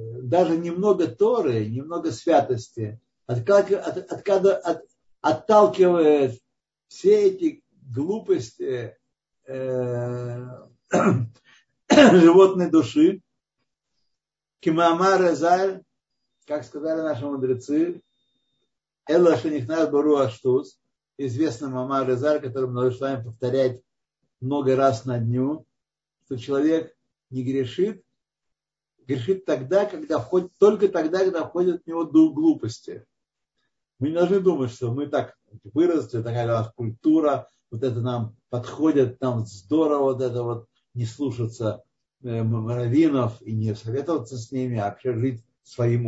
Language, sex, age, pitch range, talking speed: Russian, male, 60-79, 120-160 Hz, 100 wpm